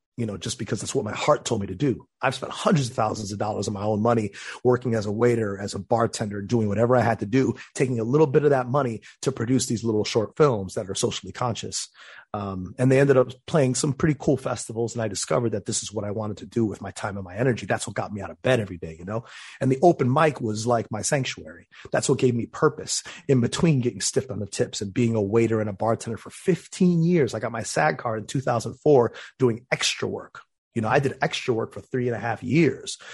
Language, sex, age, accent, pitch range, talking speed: English, male, 30-49, American, 110-130 Hz, 260 wpm